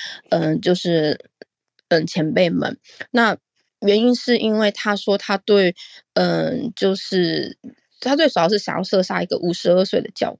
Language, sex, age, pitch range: Chinese, female, 20-39, 175-215 Hz